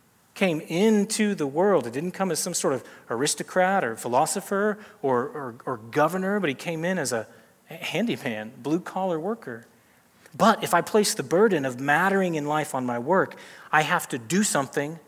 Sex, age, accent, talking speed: male, 30-49, American, 180 wpm